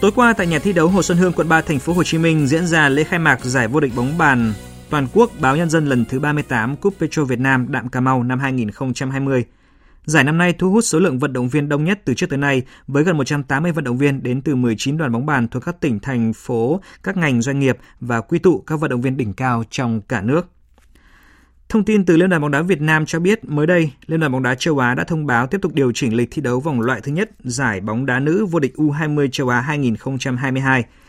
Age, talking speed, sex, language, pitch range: 20-39, 260 wpm, male, Vietnamese, 125-155 Hz